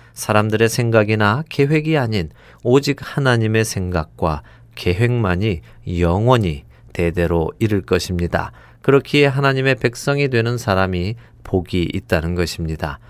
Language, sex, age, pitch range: Korean, male, 40-59, 90-130 Hz